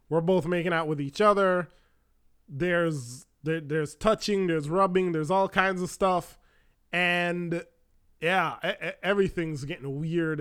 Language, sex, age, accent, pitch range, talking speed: English, male, 20-39, American, 155-195 Hz, 135 wpm